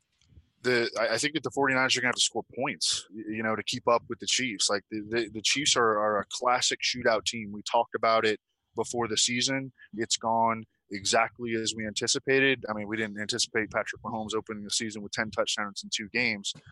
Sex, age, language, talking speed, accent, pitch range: male, 20-39, English, 220 wpm, American, 105-120 Hz